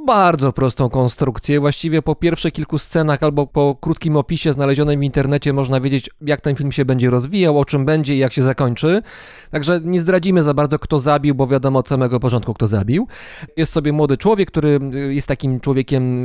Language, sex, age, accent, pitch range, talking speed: Polish, male, 20-39, native, 130-155 Hz, 190 wpm